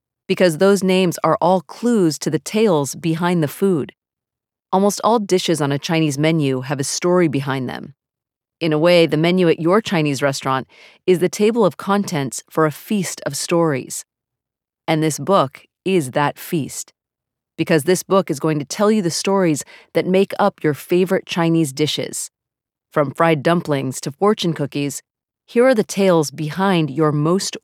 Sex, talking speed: female, 170 wpm